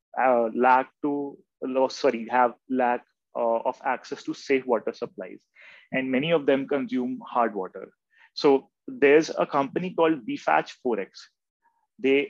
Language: English